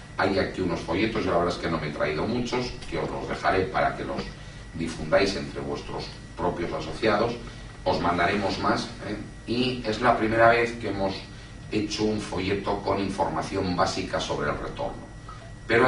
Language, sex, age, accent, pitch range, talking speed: Spanish, male, 40-59, Spanish, 85-115 Hz, 175 wpm